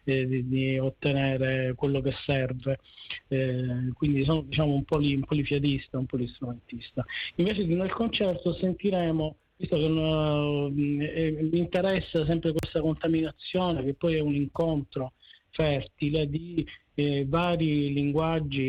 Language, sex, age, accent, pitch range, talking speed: Dutch, male, 40-59, Italian, 130-160 Hz, 120 wpm